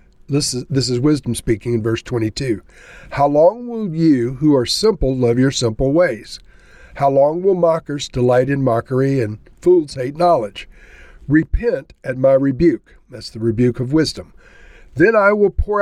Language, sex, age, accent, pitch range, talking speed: English, male, 60-79, American, 125-160 Hz, 165 wpm